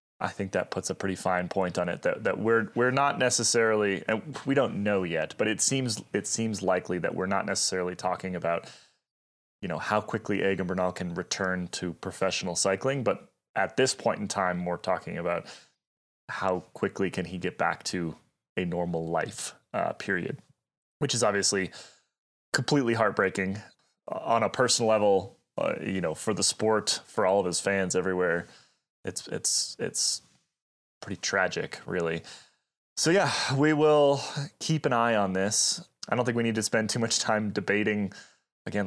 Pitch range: 90-110 Hz